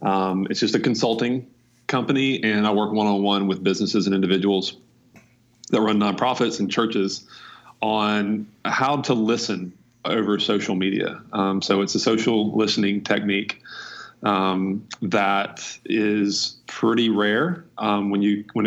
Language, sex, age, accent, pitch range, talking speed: English, male, 30-49, American, 100-115 Hz, 135 wpm